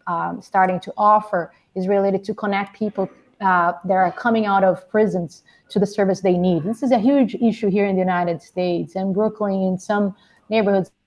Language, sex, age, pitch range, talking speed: English, female, 30-49, 185-225 Hz, 195 wpm